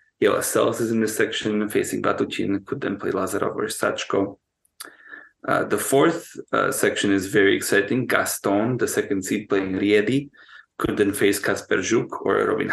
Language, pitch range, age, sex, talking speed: English, 105-125 Hz, 30-49, male, 160 wpm